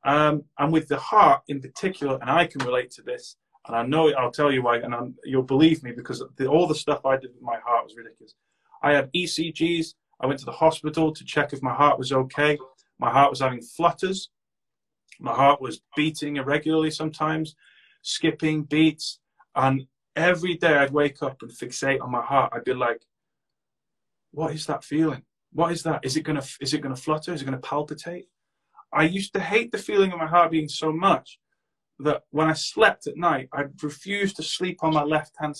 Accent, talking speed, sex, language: British, 200 wpm, male, English